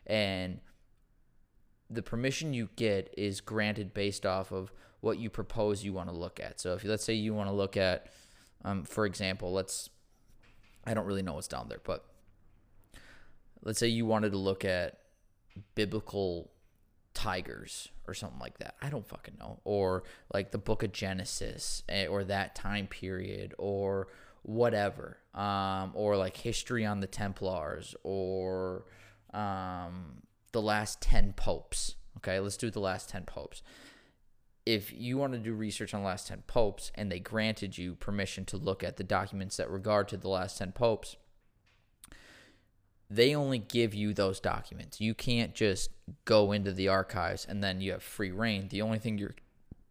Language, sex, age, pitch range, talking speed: English, male, 20-39, 95-110 Hz, 170 wpm